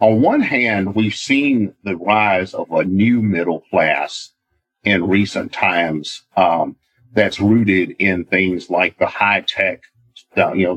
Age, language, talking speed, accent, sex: 50-69, English, 145 wpm, American, male